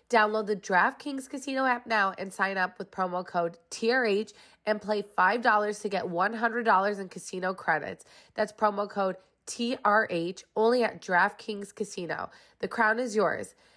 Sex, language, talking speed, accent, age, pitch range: female, English, 150 wpm, American, 20-39, 180-220 Hz